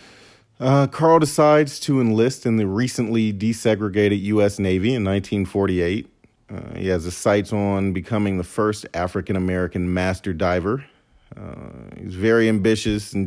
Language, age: English, 40-59